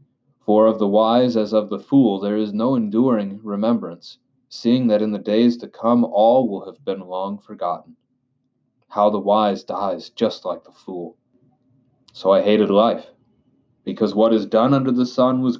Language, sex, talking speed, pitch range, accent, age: English, male, 175 wpm, 100-120 Hz, American, 30-49